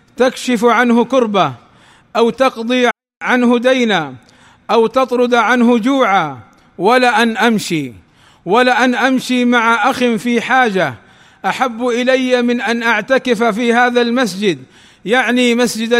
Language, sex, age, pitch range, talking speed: Arabic, male, 50-69, 215-250 Hz, 115 wpm